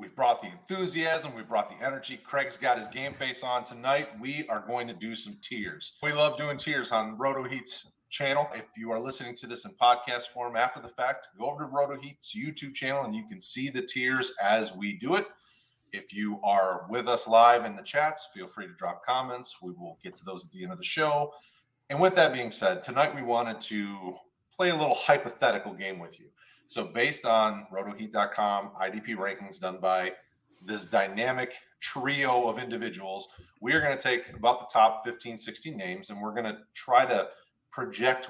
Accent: American